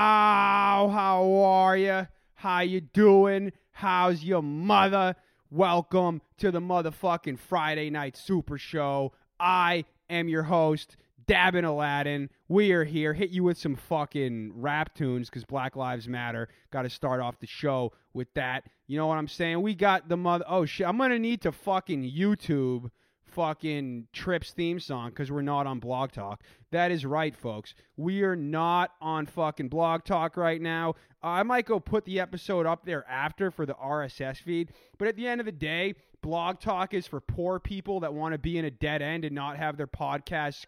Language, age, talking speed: English, 20-39, 180 wpm